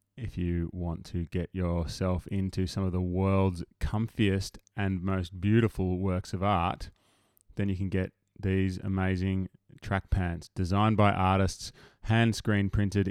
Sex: male